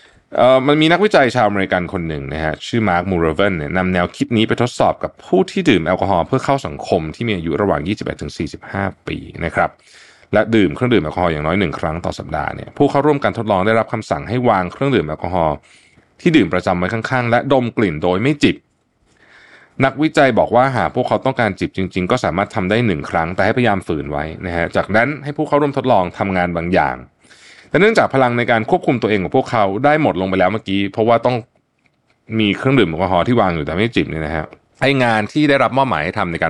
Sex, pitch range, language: male, 90-135 Hz, Thai